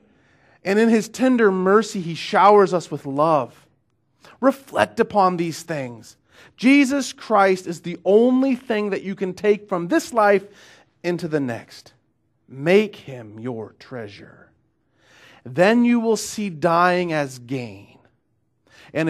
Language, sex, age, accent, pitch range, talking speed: English, male, 40-59, American, 120-170 Hz, 130 wpm